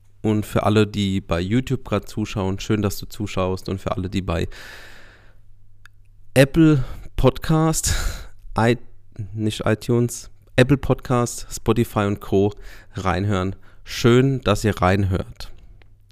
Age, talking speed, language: 40-59, 120 wpm, German